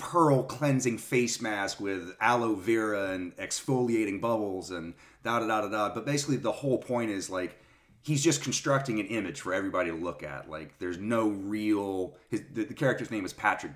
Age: 30-49